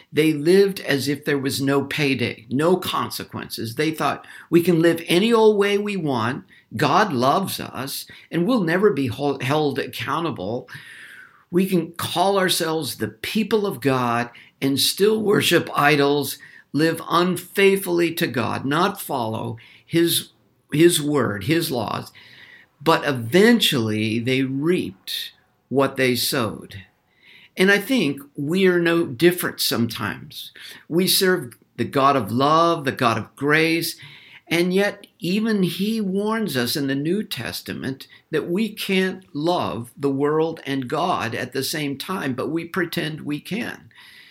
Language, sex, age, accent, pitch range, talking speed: English, male, 60-79, American, 135-190 Hz, 140 wpm